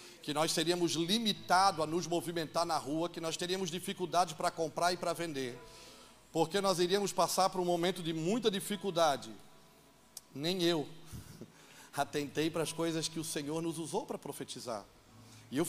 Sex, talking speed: male, 165 wpm